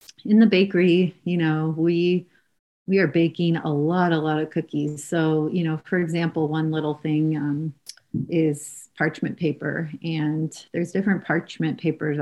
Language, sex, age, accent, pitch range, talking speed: English, female, 30-49, American, 150-170 Hz, 155 wpm